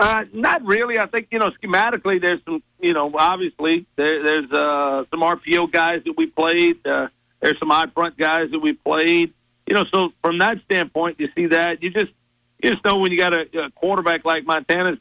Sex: male